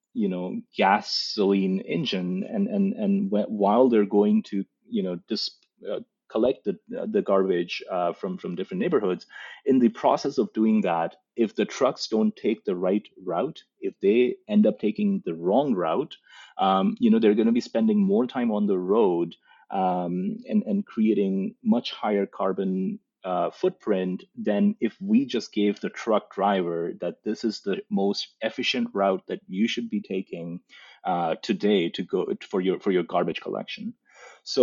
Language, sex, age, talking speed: Portuguese, male, 30-49, 175 wpm